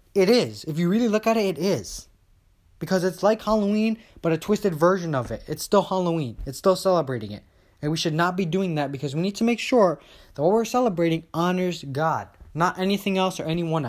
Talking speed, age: 220 wpm, 20-39